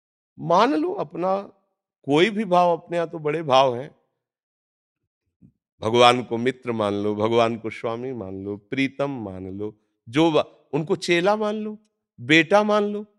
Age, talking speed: 50-69, 150 wpm